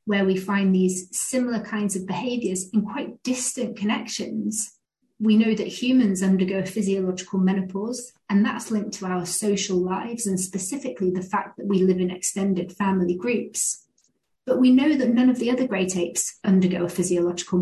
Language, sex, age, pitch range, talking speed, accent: English, female, 30-49, 190-235 Hz, 165 wpm, British